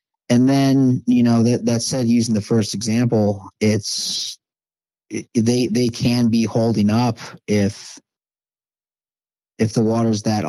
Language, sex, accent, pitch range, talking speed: English, male, American, 105-125 Hz, 145 wpm